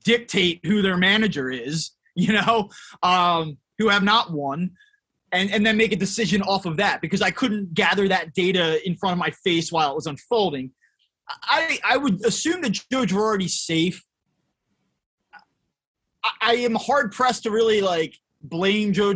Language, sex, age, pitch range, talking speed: English, male, 20-39, 180-225 Hz, 165 wpm